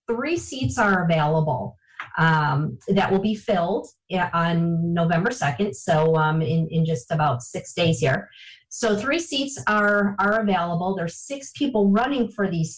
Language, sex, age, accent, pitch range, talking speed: English, female, 40-59, American, 165-210 Hz, 155 wpm